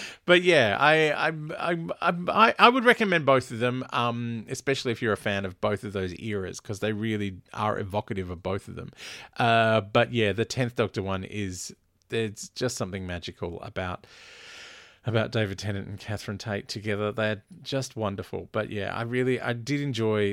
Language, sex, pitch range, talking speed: English, male, 105-135 Hz, 185 wpm